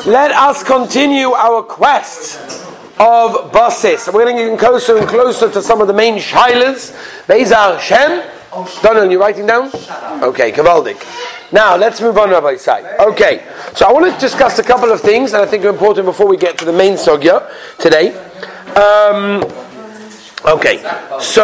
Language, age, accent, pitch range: English, 40-59, British, 210-280 Hz